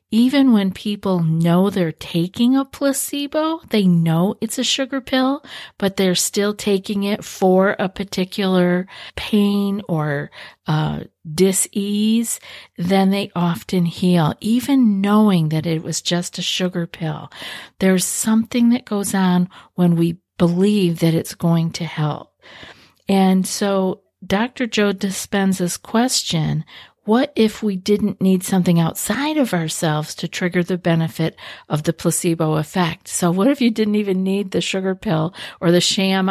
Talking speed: 145 wpm